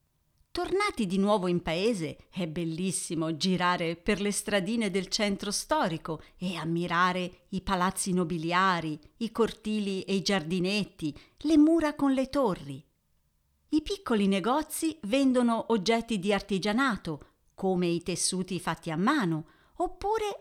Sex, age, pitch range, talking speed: female, 50-69, 170-230 Hz, 125 wpm